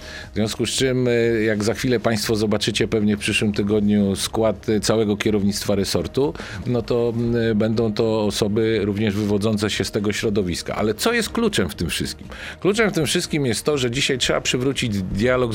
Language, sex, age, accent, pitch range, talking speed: Polish, male, 40-59, native, 105-125 Hz, 180 wpm